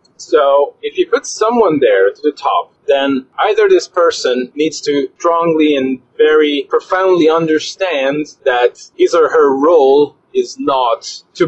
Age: 30-49